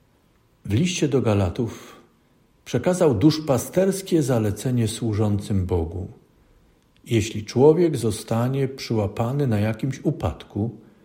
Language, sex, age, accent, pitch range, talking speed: Polish, male, 50-69, native, 105-145 Hz, 85 wpm